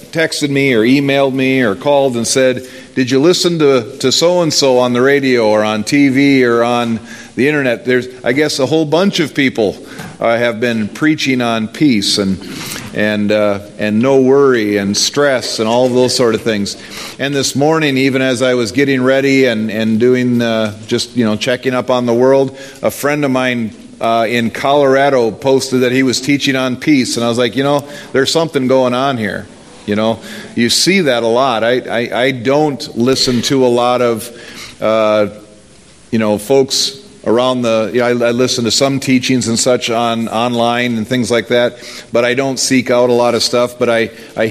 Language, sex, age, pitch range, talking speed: English, male, 50-69, 115-135 Hz, 200 wpm